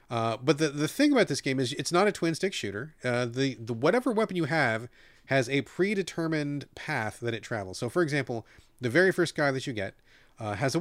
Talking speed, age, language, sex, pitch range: 235 wpm, 30-49, English, male, 115-150 Hz